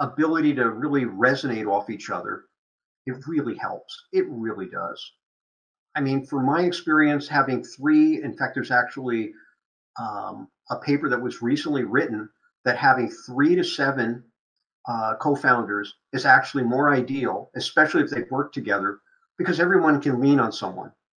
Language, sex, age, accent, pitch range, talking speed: English, male, 50-69, American, 125-165 Hz, 155 wpm